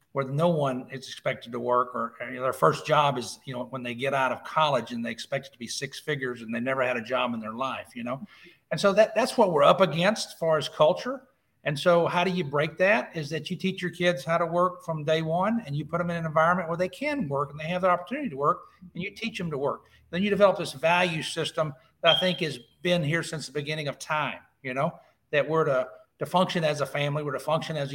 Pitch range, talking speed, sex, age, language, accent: 130-165 Hz, 275 wpm, male, 50-69, English, American